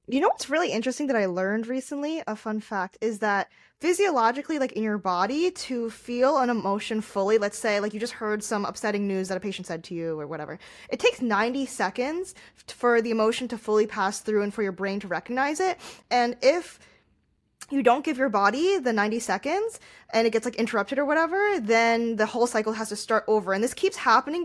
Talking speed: 215 wpm